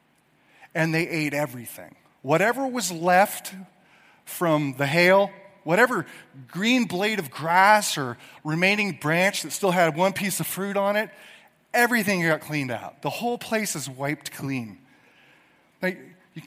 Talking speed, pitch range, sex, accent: 140 wpm, 140-200 Hz, male, American